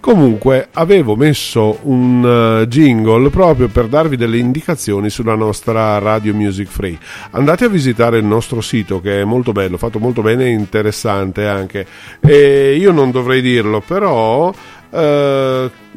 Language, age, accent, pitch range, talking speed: Italian, 40-59, native, 105-140 Hz, 145 wpm